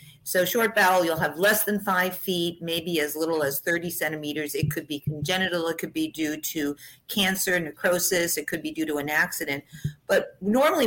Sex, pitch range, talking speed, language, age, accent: female, 155-195 Hz, 195 wpm, English, 50-69, American